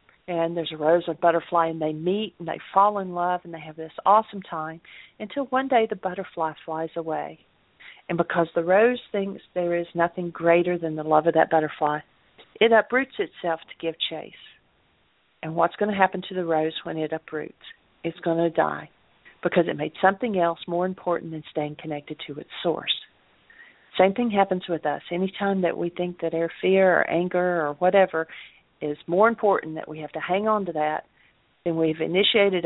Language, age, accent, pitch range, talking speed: English, 50-69, American, 160-190 Hz, 195 wpm